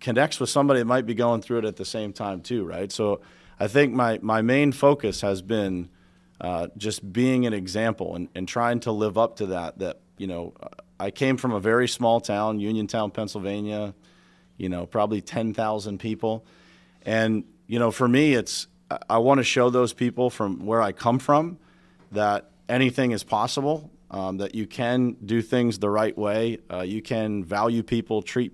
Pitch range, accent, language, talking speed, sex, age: 100-120 Hz, American, English, 185 wpm, male, 40-59